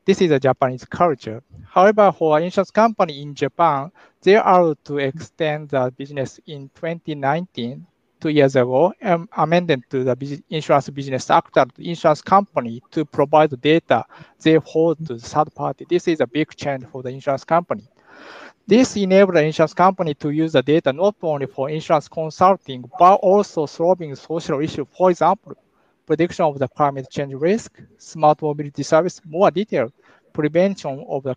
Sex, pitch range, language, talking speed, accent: male, 140-175 Hz, English, 170 wpm, Japanese